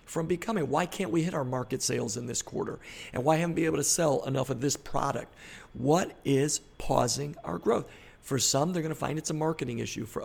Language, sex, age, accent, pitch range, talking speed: English, male, 50-69, American, 130-165 Hz, 230 wpm